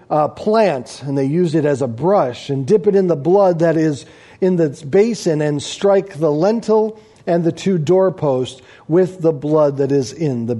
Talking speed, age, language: 200 wpm, 40-59, English